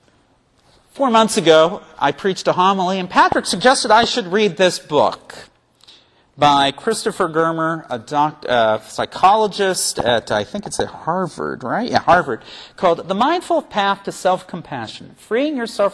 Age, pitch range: 40-59, 145-210 Hz